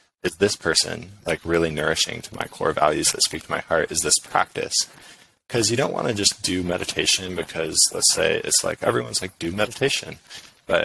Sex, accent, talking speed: male, American, 200 wpm